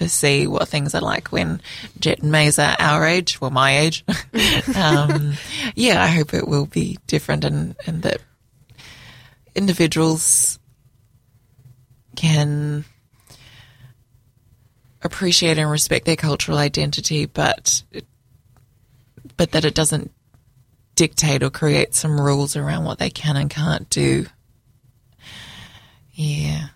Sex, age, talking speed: female, 20-39, 125 wpm